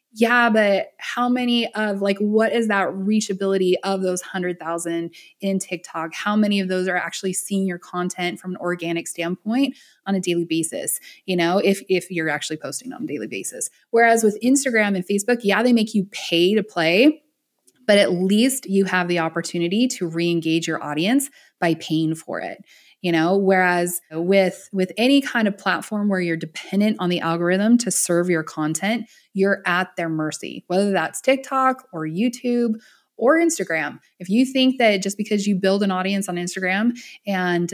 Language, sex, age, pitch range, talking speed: English, female, 20-39, 175-225 Hz, 180 wpm